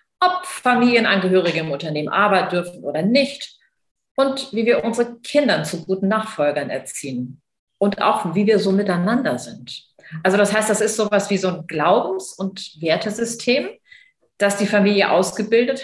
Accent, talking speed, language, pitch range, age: German, 150 wpm, German, 175-225 Hz, 40-59